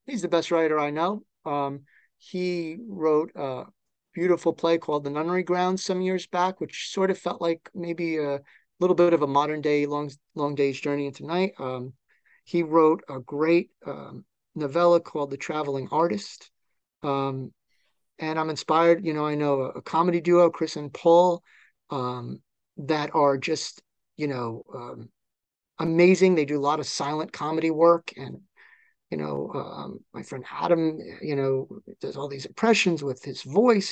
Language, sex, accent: English, male, American